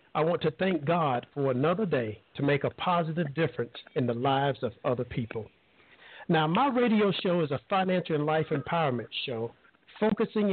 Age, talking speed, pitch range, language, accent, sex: 50-69, 175 wpm, 130-175 Hz, English, American, male